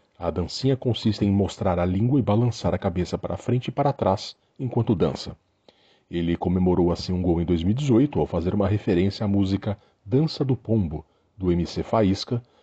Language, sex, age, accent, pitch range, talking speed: Portuguese, male, 40-59, Brazilian, 90-110 Hz, 175 wpm